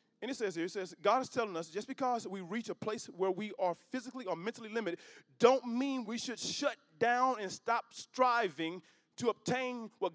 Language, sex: English, male